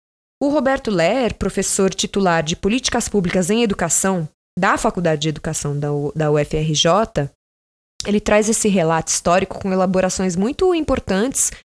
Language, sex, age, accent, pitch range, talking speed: Portuguese, female, 20-39, Brazilian, 180-245 Hz, 140 wpm